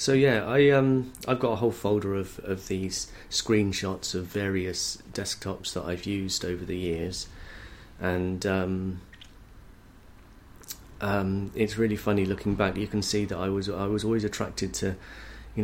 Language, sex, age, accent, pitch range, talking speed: English, male, 30-49, British, 90-110 Hz, 160 wpm